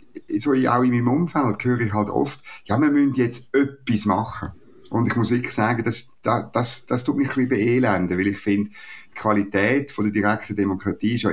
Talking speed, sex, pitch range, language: 210 wpm, male, 90-125 Hz, German